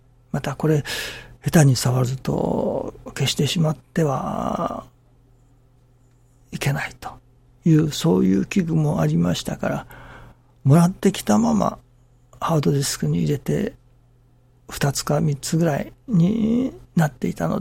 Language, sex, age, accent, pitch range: Japanese, male, 60-79, native, 125-165 Hz